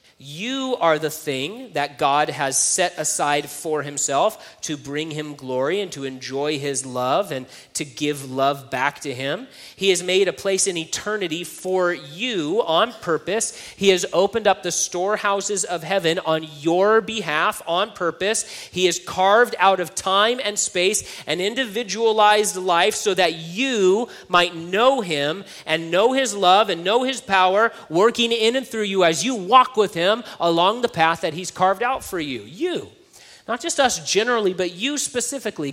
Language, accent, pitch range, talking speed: English, American, 145-200 Hz, 175 wpm